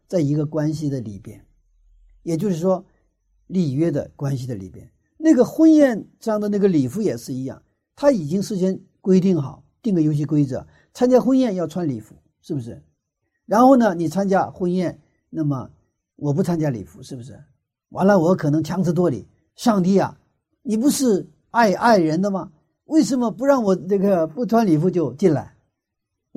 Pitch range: 135-205 Hz